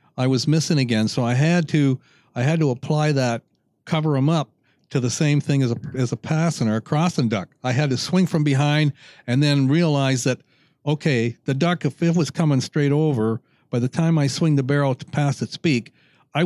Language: English